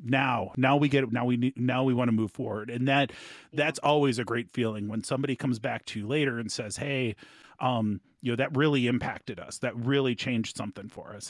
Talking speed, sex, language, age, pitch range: 230 wpm, male, English, 30-49, 125-160 Hz